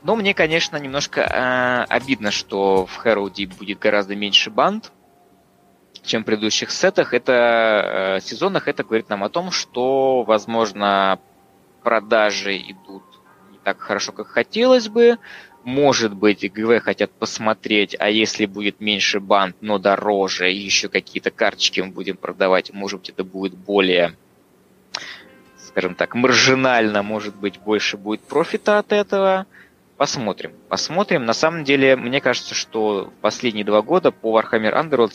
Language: Russian